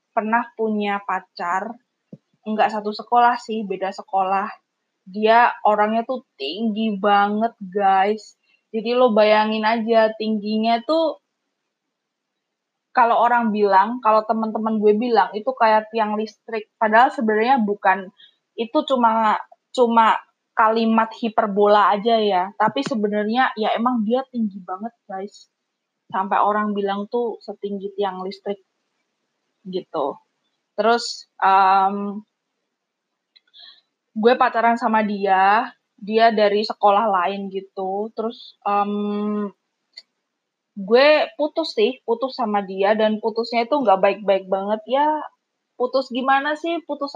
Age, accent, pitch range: 20-39, native, 205-250 Hz